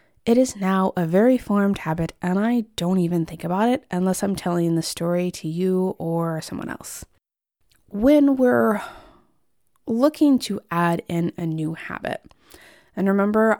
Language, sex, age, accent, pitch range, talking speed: English, female, 20-39, American, 170-220 Hz, 155 wpm